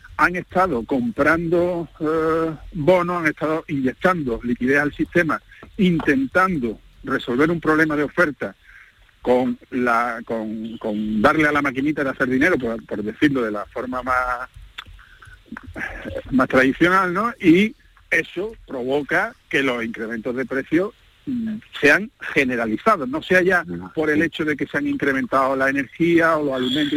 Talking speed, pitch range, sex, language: 140 wpm, 135-180 Hz, male, Spanish